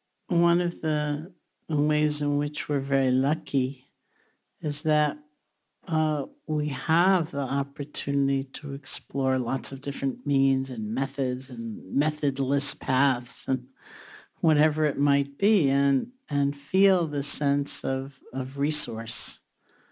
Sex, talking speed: male, 120 wpm